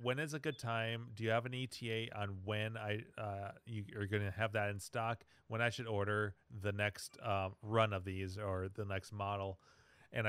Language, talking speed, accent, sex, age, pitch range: English, 205 wpm, American, male, 40-59, 105-125 Hz